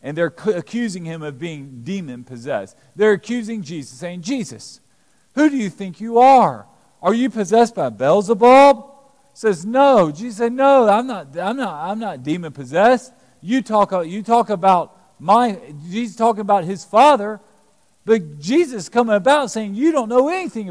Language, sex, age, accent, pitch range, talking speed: English, male, 40-59, American, 165-245 Hz, 160 wpm